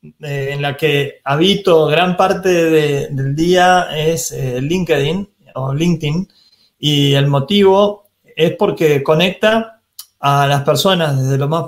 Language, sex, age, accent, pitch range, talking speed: Spanish, male, 30-49, Argentinian, 140-180 Hz, 135 wpm